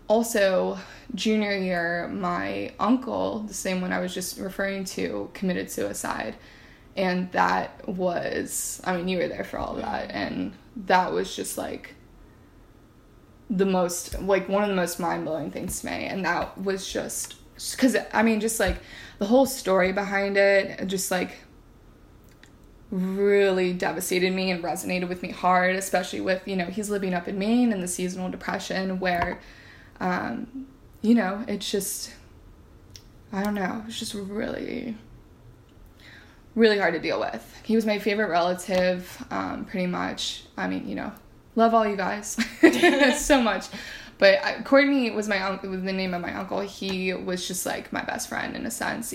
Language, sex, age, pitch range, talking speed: English, female, 20-39, 180-210 Hz, 165 wpm